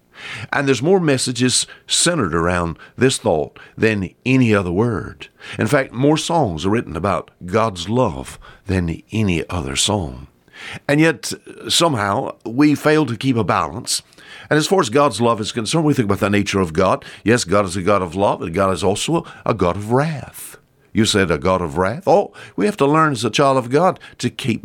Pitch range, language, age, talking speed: 95-135 Hz, English, 60-79, 200 wpm